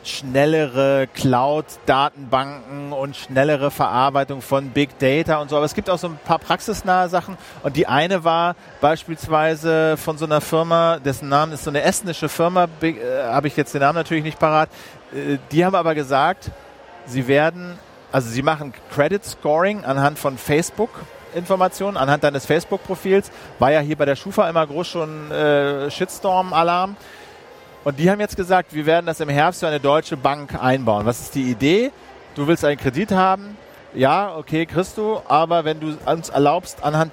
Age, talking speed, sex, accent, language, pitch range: 40-59, 170 wpm, male, German, German, 145-180 Hz